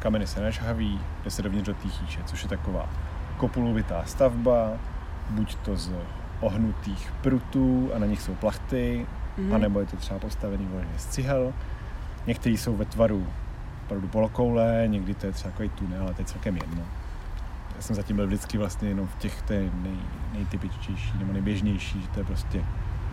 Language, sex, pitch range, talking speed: Slovak, male, 90-110 Hz, 175 wpm